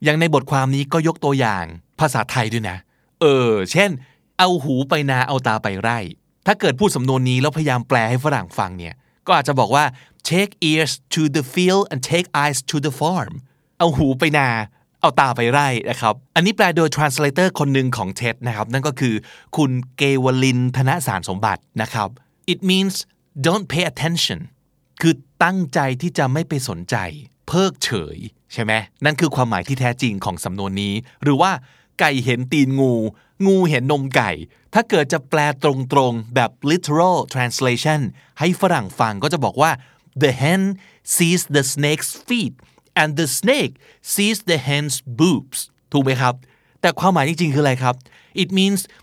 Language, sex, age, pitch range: Thai, male, 20-39, 125-165 Hz